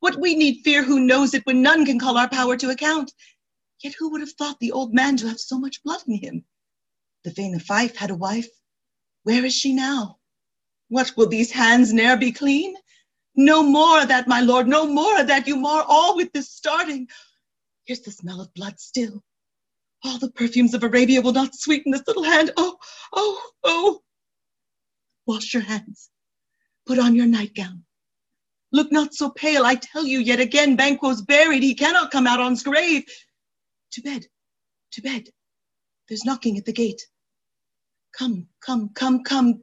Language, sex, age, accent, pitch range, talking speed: English, female, 40-59, American, 235-300 Hz, 185 wpm